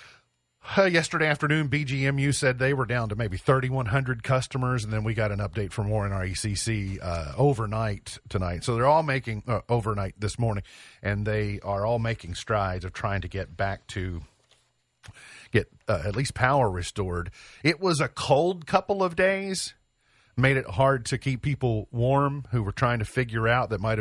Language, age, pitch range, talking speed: English, 40-59, 105-130 Hz, 170 wpm